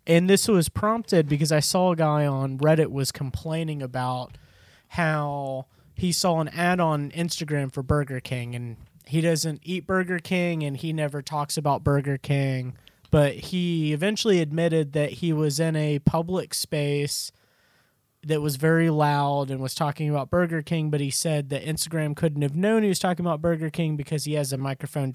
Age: 30-49